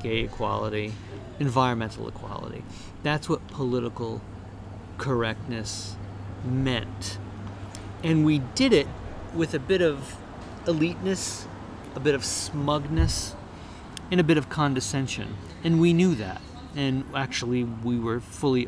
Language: English